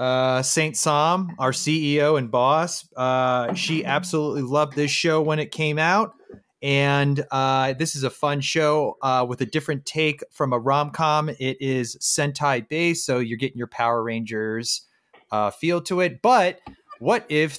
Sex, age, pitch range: male, 30-49, 120-155 Hz